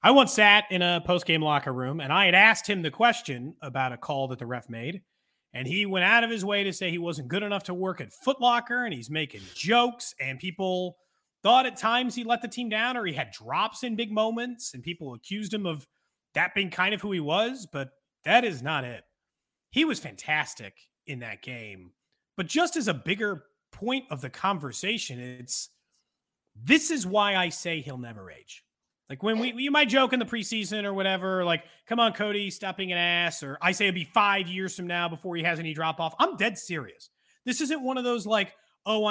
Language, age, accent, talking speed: English, 30-49, American, 220 wpm